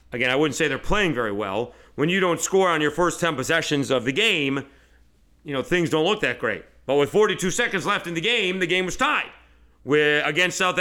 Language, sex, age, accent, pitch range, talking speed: English, male, 40-59, American, 125-170 Hz, 235 wpm